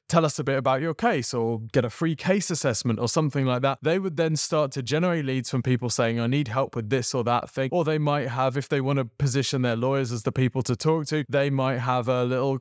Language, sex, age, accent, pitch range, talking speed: English, male, 20-39, British, 125-155 Hz, 270 wpm